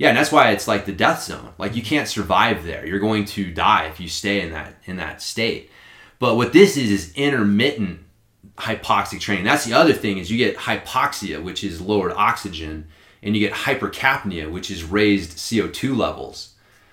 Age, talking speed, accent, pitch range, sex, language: 30-49, 195 wpm, American, 100-115 Hz, male, English